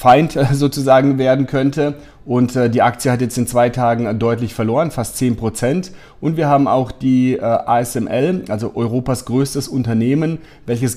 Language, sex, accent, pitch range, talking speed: German, male, German, 115-135 Hz, 160 wpm